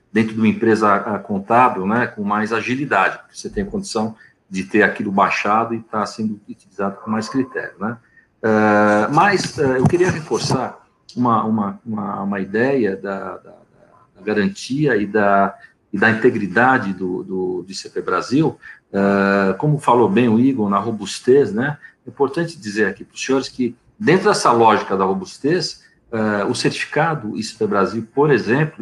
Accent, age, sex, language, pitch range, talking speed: Brazilian, 50-69, male, Portuguese, 100-125 Hz, 170 wpm